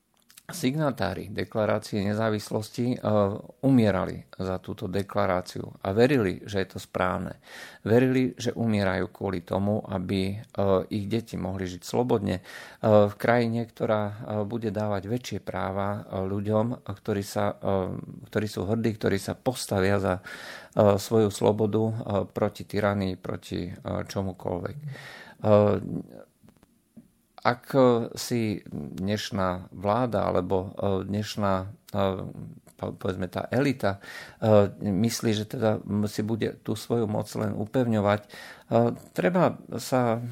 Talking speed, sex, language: 100 wpm, male, Slovak